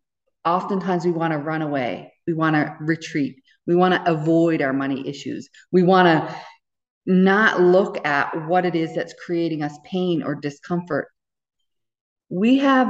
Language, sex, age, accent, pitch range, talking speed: English, female, 40-59, American, 160-200 Hz, 160 wpm